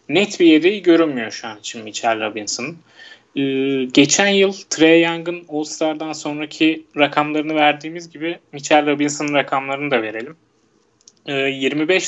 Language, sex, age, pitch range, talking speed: Turkish, male, 30-49, 135-165 Hz, 130 wpm